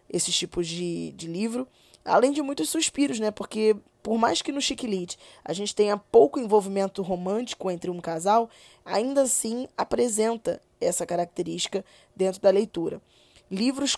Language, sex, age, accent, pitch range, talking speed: Portuguese, female, 10-29, Brazilian, 190-230 Hz, 145 wpm